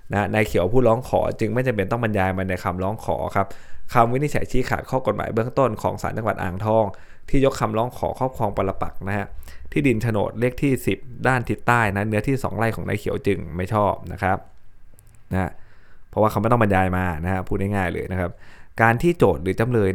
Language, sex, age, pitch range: Thai, male, 20-39, 95-115 Hz